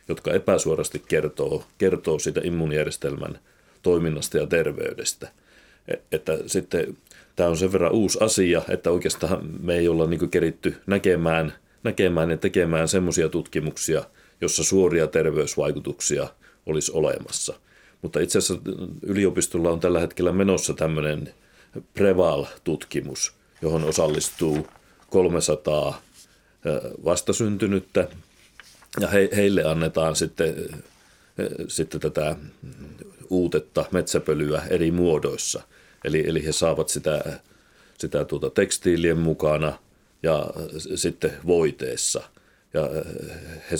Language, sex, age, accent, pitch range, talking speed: Finnish, male, 40-59, native, 80-95 Hz, 95 wpm